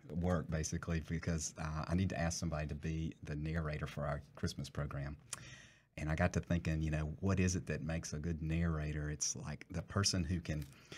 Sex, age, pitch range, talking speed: male, 40-59, 80-85 Hz, 210 wpm